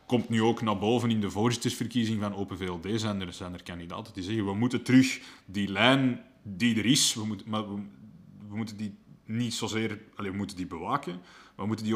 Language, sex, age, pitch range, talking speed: Dutch, male, 30-49, 100-125 Hz, 215 wpm